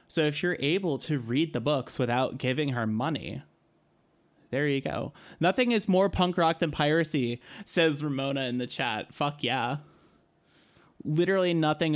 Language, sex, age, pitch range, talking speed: English, male, 20-39, 125-160 Hz, 155 wpm